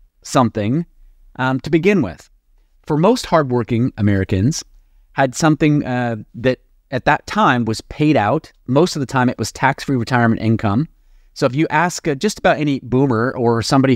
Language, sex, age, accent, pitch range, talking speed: English, male, 30-49, American, 115-145 Hz, 170 wpm